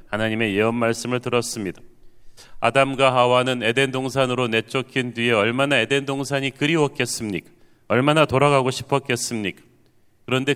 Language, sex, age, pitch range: Korean, male, 40-59, 115-135 Hz